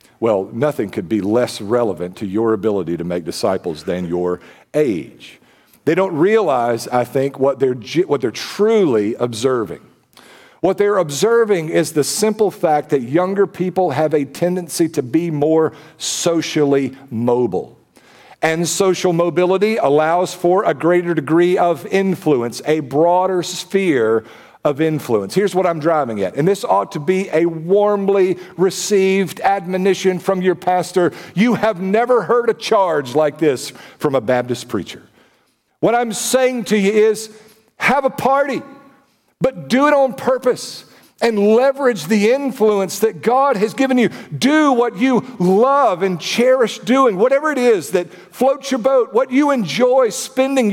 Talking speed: 155 wpm